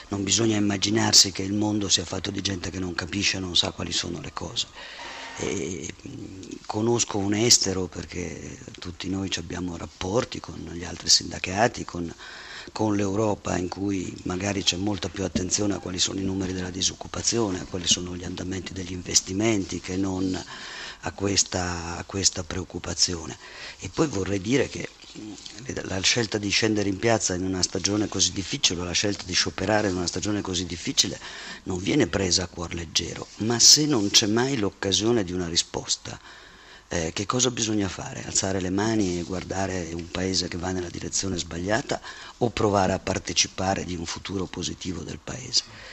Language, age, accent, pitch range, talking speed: Italian, 50-69, native, 90-105 Hz, 165 wpm